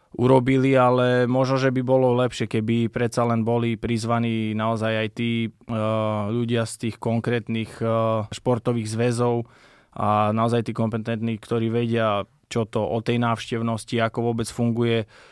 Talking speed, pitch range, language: 145 wpm, 110-120 Hz, Slovak